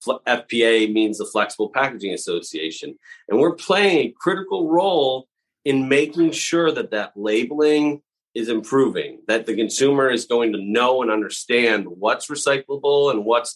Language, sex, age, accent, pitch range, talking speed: English, male, 30-49, American, 115-170 Hz, 145 wpm